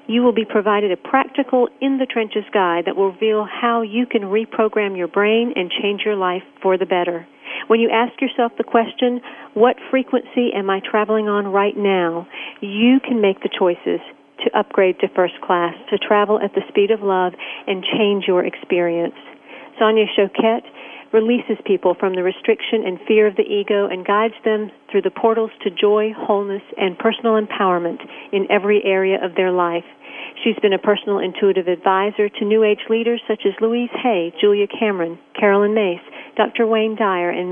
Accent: American